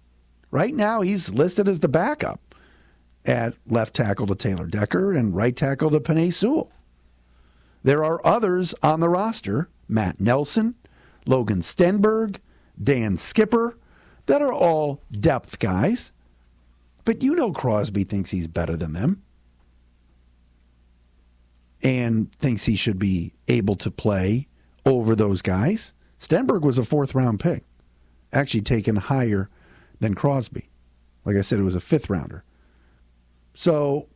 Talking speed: 130 wpm